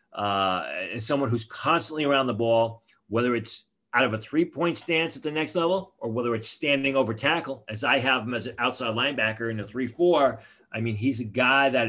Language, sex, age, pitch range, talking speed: English, male, 40-59, 115-140 Hz, 210 wpm